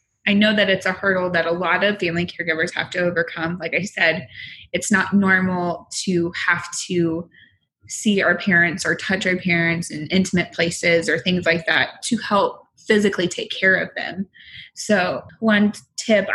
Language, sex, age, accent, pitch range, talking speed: English, female, 20-39, American, 175-210 Hz, 175 wpm